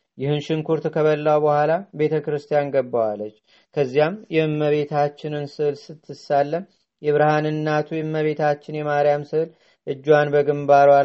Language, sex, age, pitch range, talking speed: Amharic, male, 40-59, 145-155 Hz, 85 wpm